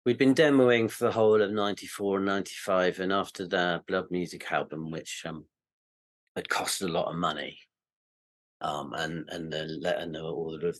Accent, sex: British, male